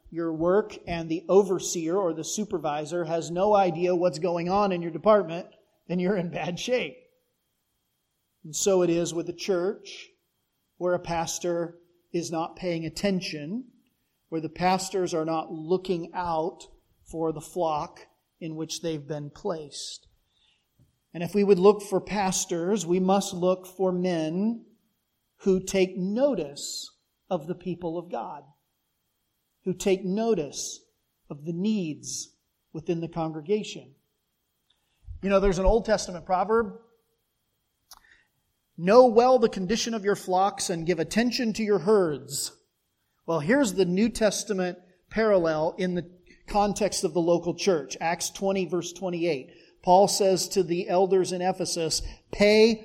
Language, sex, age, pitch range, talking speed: English, male, 40-59, 170-205 Hz, 140 wpm